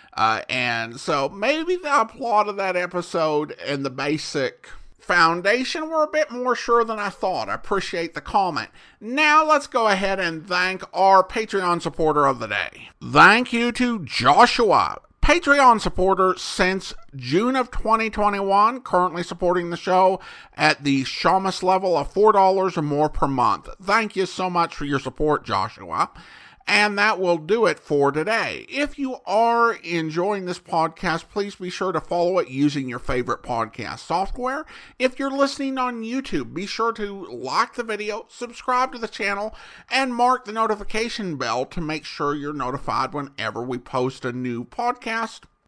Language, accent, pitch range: English, American, 160-230 Hz